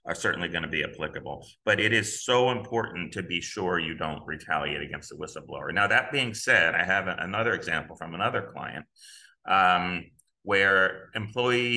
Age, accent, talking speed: 30-49, American, 175 wpm